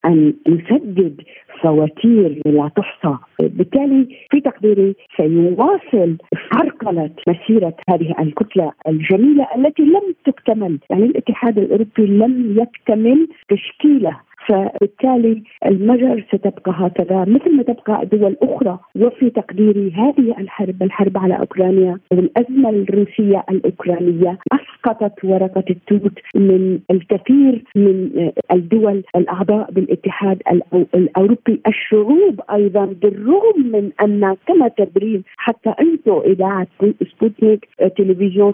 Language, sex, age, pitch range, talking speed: Arabic, female, 50-69, 190-230 Hz, 95 wpm